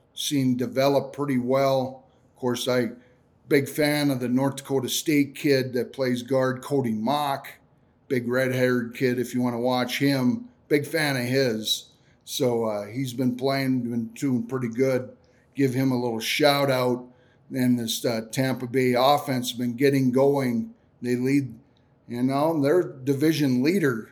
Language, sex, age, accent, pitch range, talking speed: English, male, 50-69, American, 125-140 Hz, 155 wpm